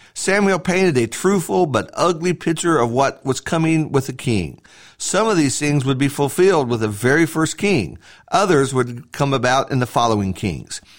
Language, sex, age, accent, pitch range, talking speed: English, male, 50-69, American, 125-170 Hz, 185 wpm